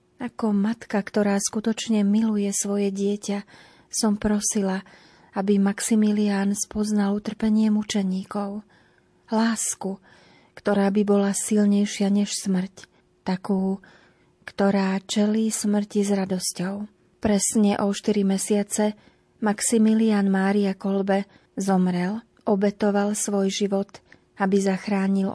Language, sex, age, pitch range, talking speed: Slovak, female, 30-49, 195-210 Hz, 95 wpm